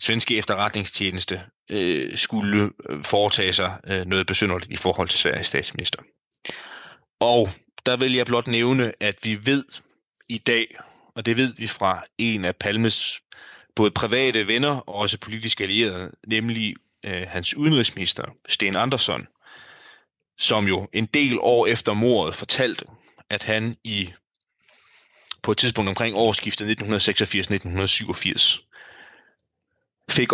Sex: male